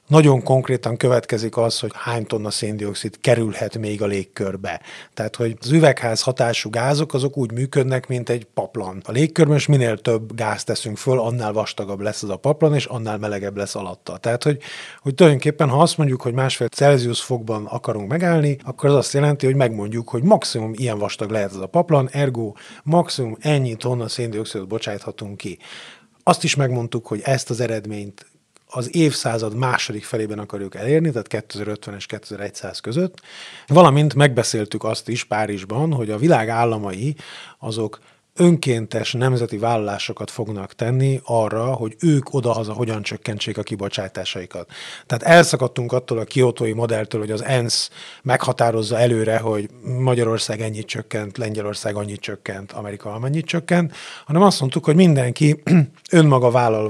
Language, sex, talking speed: Hungarian, male, 155 wpm